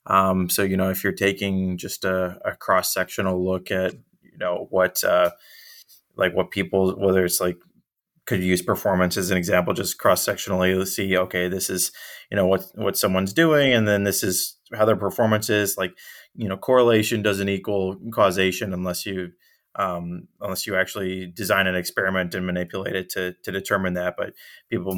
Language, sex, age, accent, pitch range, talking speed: English, male, 20-39, American, 90-100 Hz, 180 wpm